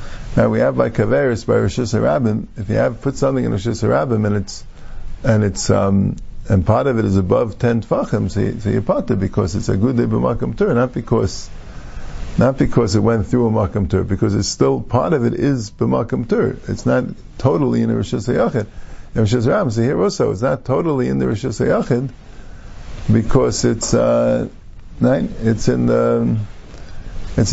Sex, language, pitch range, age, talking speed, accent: male, English, 100-140 Hz, 50-69, 180 wpm, American